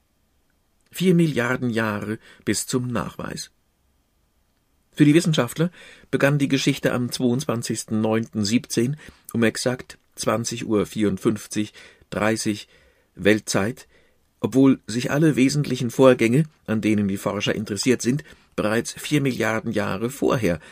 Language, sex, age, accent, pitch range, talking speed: German, male, 50-69, German, 100-130 Hz, 100 wpm